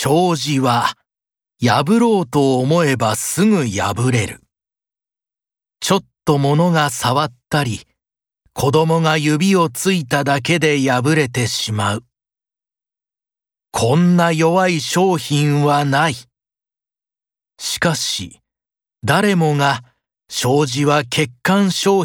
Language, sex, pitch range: Japanese, male, 130-180 Hz